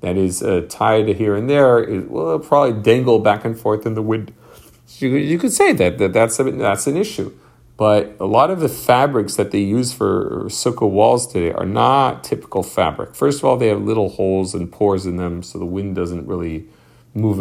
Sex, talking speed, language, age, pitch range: male, 215 wpm, English, 40-59, 95-120 Hz